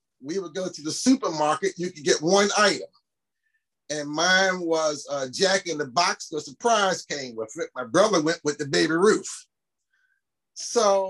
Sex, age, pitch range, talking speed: male, 30-49, 140-185 Hz, 175 wpm